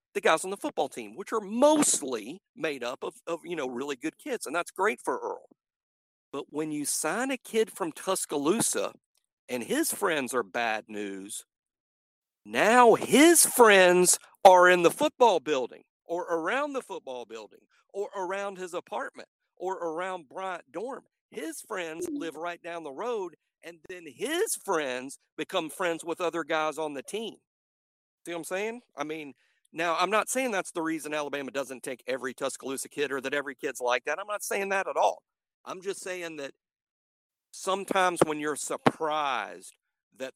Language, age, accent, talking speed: English, 50-69, American, 175 wpm